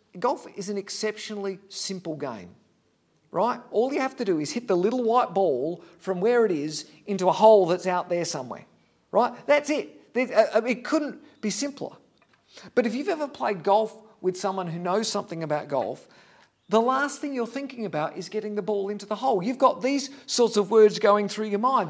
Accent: Australian